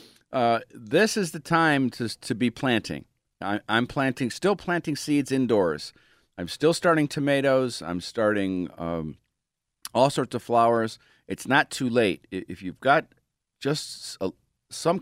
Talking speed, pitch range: 135 wpm, 105-140 Hz